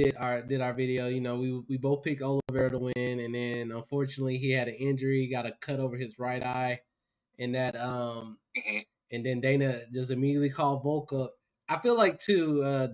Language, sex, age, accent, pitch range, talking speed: English, male, 20-39, American, 130-145 Hz, 200 wpm